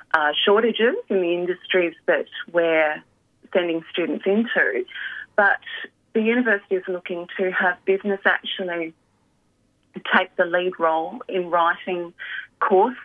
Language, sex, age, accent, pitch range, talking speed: English, female, 30-49, Australian, 160-220 Hz, 120 wpm